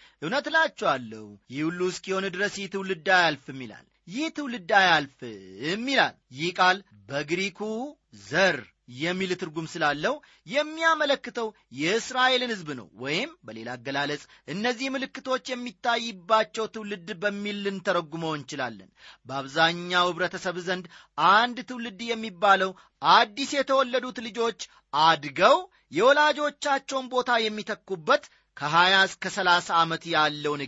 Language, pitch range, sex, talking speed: Amharic, 165-245 Hz, male, 90 wpm